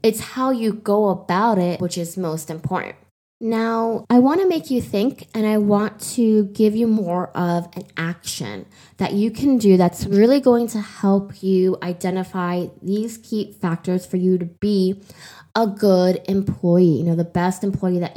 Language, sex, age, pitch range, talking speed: English, female, 20-39, 175-210 Hz, 180 wpm